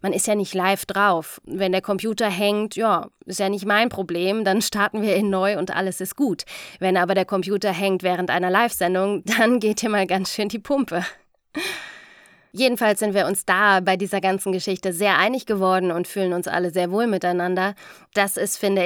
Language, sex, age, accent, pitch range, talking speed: German, female, 20-39, German, 180-205 Hz, 200 wpm